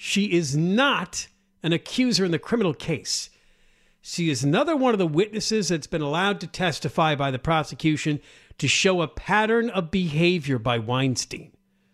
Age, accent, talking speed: 50-69, American, 160 wpm